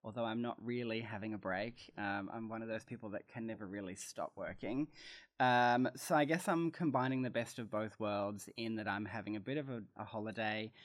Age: 20-39